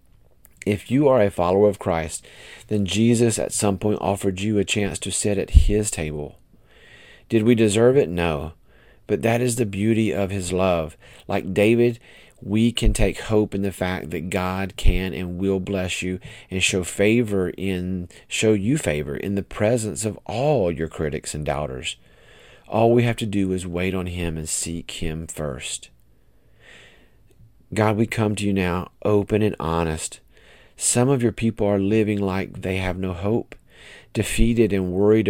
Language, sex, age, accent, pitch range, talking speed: English, male, 40-59, American, 90-110 Hz, 175 wpm